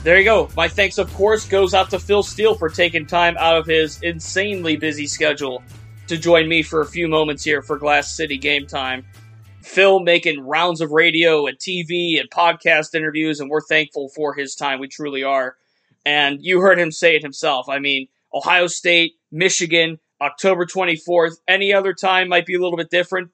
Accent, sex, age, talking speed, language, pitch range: American, male, 20-39, 195 wpm, English, 150-175 Hz